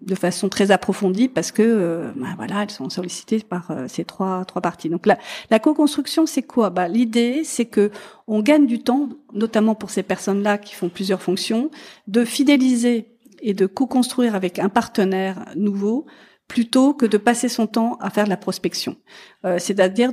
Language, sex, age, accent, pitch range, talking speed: French, female, 50-69, French, 190-235 Hz, 180 wpm